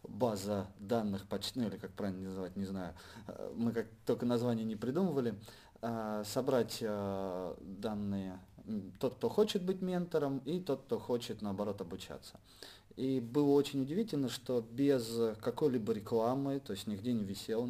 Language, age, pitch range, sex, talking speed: Russian, 30-49, 105-135 Hz, male, 140 wpm